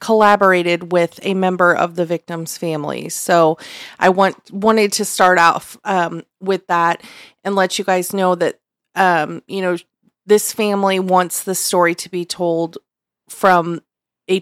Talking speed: 155 wpm